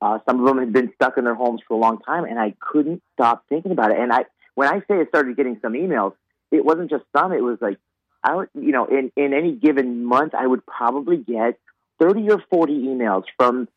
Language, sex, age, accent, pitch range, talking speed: English, male, 40-59, American, 110-140 Hz, 245 wpm